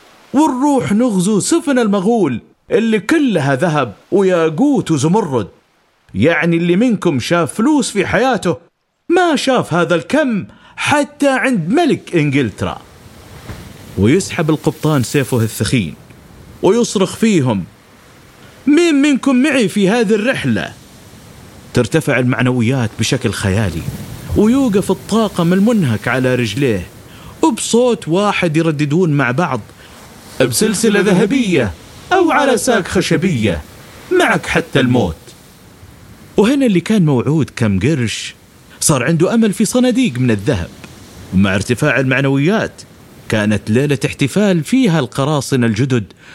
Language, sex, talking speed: Arabic, male, 105 wpm